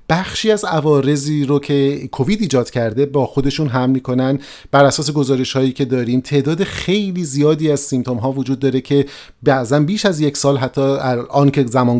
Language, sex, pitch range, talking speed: Persian, male, 120-150 Hz, 180 wpm